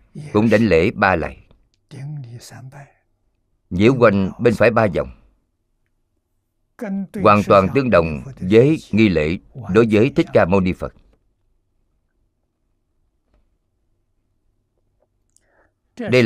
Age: 50-69